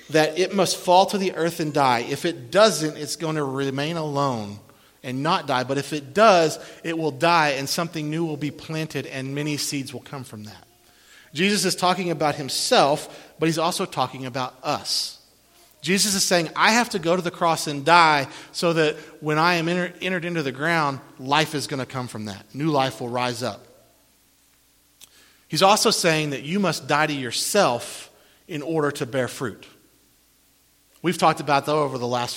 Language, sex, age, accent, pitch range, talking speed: English, male, 40-59, American, 135-170 Hz, 195 wpm